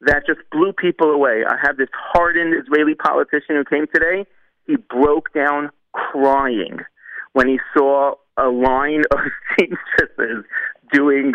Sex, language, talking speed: male, English, 135 wpm